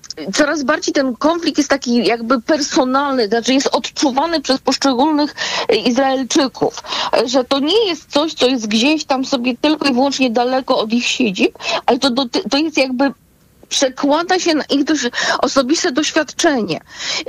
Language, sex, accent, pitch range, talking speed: Polish, female, native, 235-290 Hz, 150 wpm